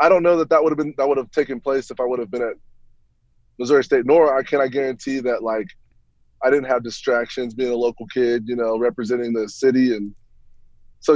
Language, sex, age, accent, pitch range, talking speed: English, male, 20-39, American, 115-135 Hz, 225 wpm